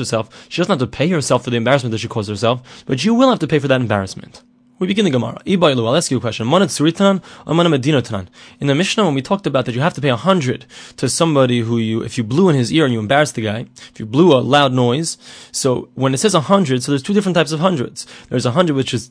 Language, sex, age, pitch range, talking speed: English, male, 20-39, 125-170 Hz, 265 wpm